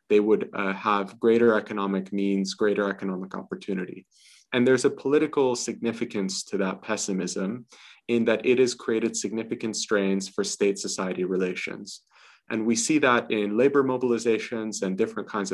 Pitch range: 100-115 Hz